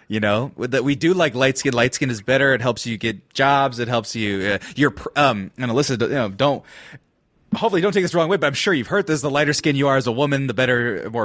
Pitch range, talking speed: 115-150 Hz, 275 wpm